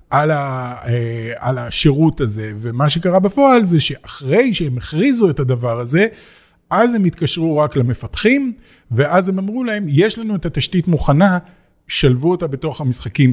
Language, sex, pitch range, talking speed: Hebrew, male, 130-185 Hz, 145 wpm